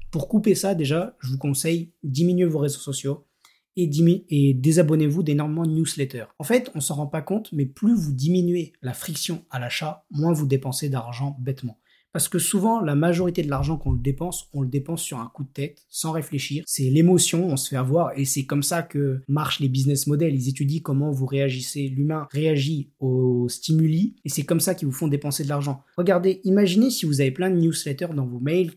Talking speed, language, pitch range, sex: 215 wpm, French, 135-170 Hz, male